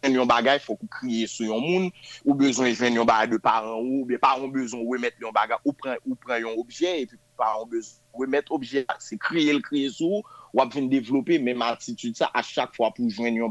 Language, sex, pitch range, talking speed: French, male, 120-160 Hz, 220 wpm